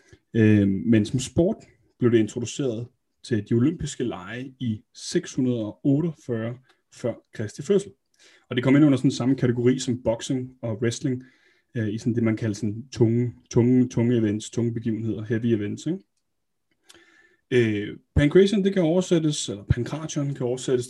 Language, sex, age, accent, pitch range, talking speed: Danish, male, 30-49, native, 110-135 Hz, 145 wpm